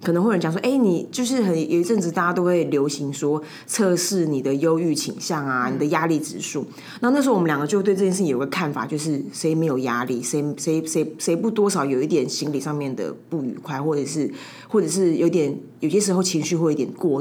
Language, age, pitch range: Chinese, 20-39, 155-210 Hz